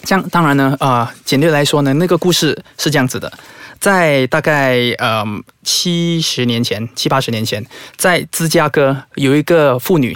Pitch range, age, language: 130-165 Hz, 20-39, Chinese